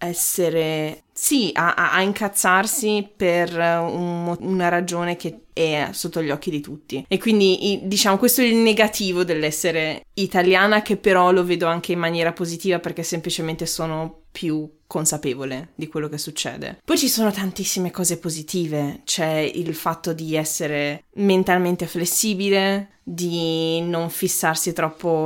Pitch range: 160-190 Hz